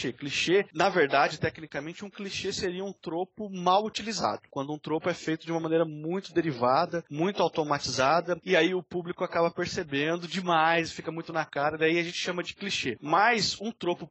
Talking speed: 185 wpm